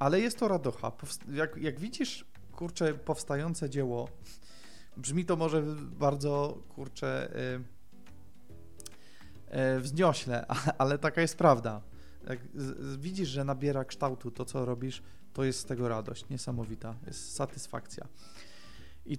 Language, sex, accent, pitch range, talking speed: Polish, male, native, 130-165 Hz, 120 wpm